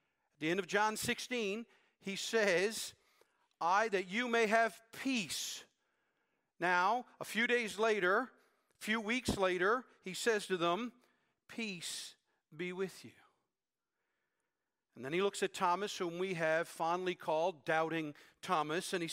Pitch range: 175-240 Hz